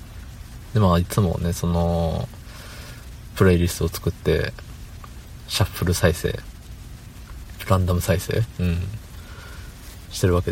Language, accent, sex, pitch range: Japanese, native, male, 85-105 Hz